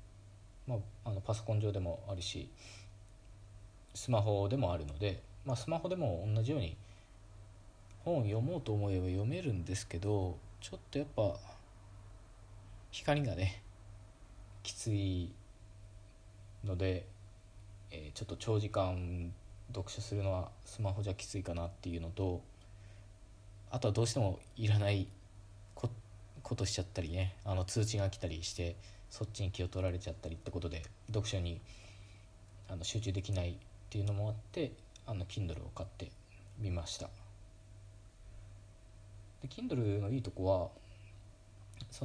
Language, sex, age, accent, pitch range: Japanese, male, 20-39, native, 95-105 Hz